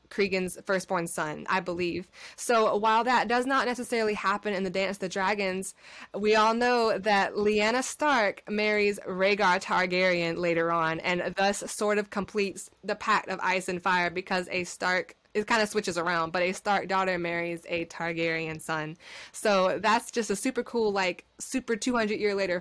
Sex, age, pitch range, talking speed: female, 20-39, 185-225 Hz, 175 wpm